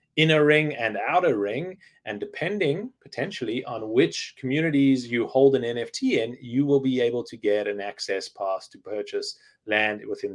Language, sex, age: English, male, 30-49